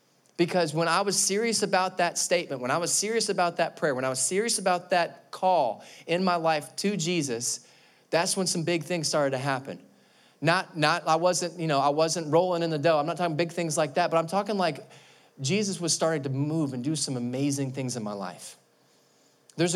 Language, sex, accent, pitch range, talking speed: English, male, American, 130-170 Hz, 220 wpm